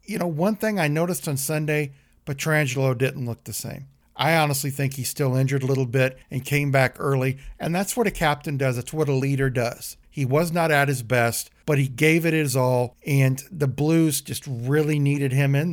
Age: 50-69